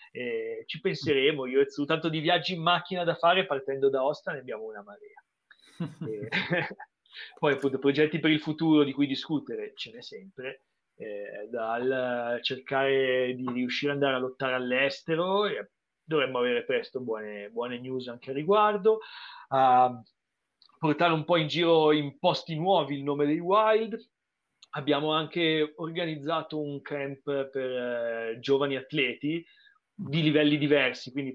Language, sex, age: Italian, male, 30-49